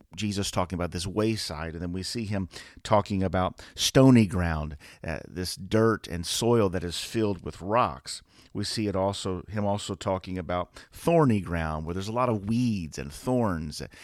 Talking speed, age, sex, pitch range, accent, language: 180 wpm, 40-59, male, 85-110 Hz, American, English